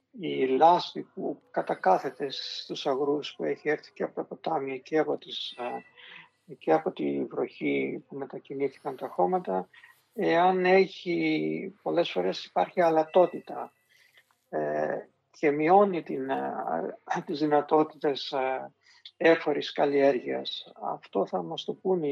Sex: male